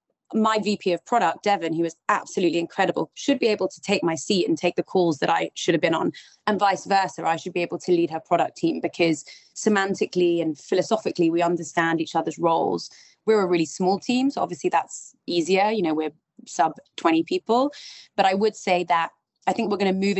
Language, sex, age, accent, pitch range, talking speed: English, female, 20-39, British, 170-210 Hz, 215 wpm